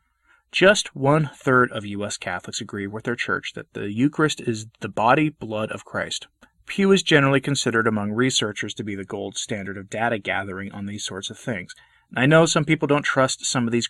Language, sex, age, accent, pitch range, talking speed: English, male, 30-49, American, 105-140 Hz, 195 wpm